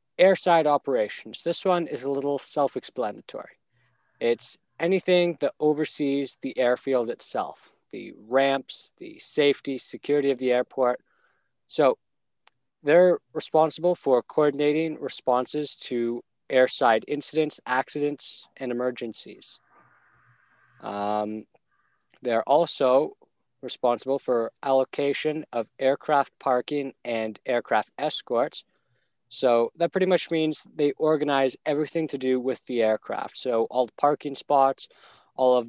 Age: 20-39